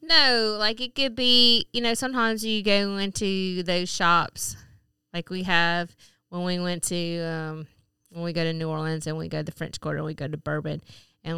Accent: American